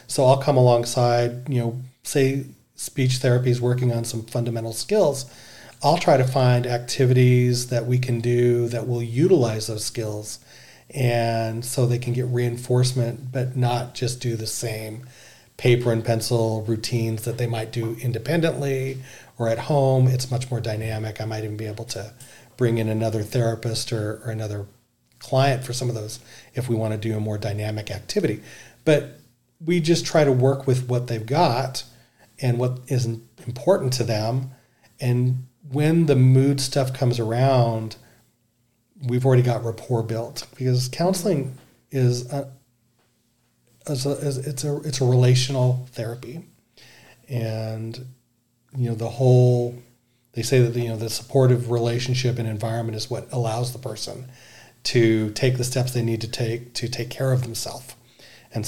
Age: 40-59